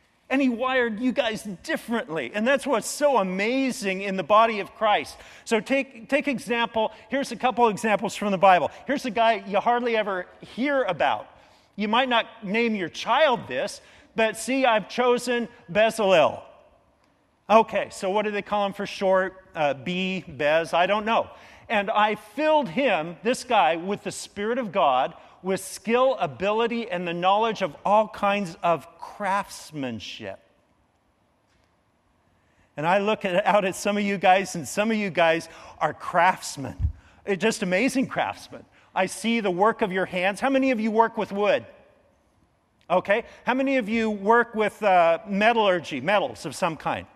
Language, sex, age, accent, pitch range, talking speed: English, male, 40-59, American, 185-235 Hz, 165 wpm